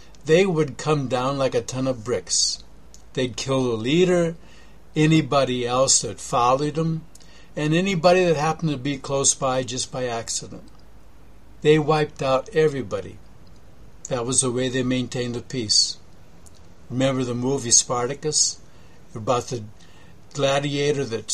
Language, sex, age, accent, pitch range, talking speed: English, male, 60-79, American, 120-155 Hz, 140 wpm